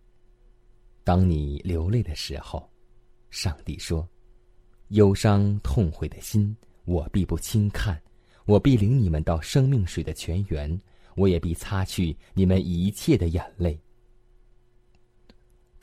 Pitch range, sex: 85-120 Hz, male